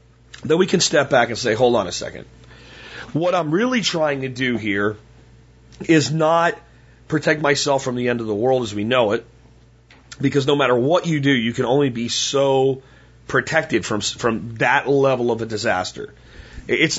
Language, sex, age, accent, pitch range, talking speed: English, male, 40-59, American, 125-160 Hz, 185 wpm